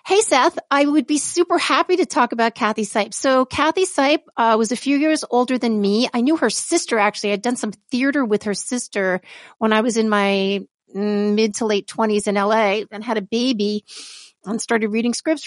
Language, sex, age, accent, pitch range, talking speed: English, female, 50-69, American, 205-275 Hz, 210 wpm